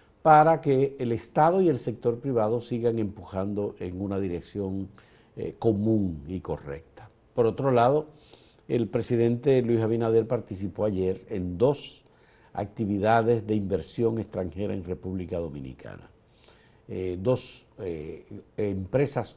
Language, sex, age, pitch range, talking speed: Spanish, male, 50-69, 95-125 Hz, 120 wpm